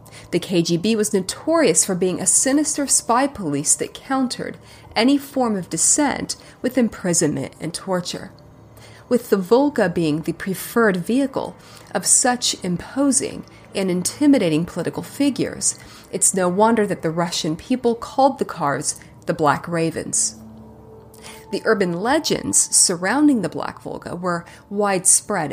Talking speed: 130 wpm